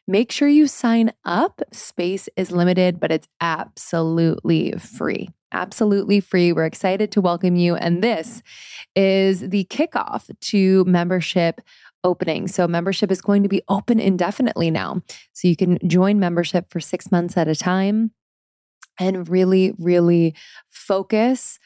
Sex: female